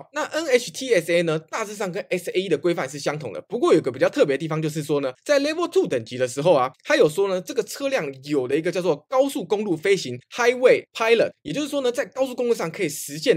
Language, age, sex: Chinese, 20-39, male